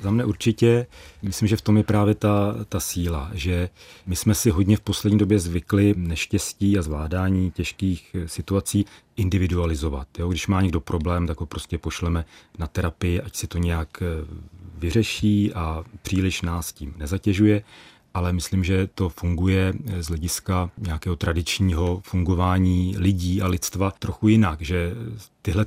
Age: 40-59